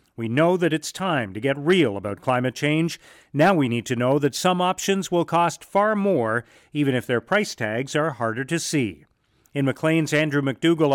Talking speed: 195 wpm